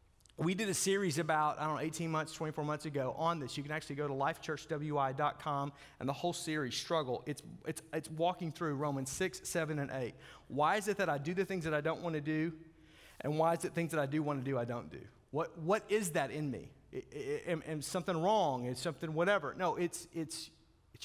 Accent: American